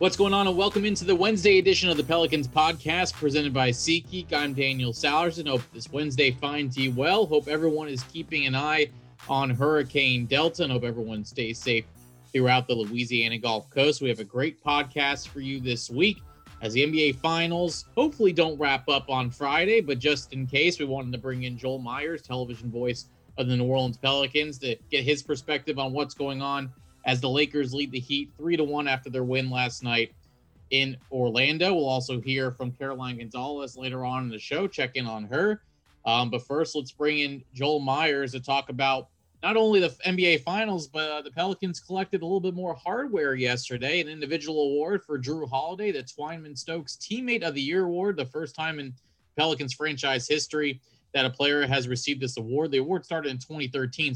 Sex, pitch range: male, 125-155 Hz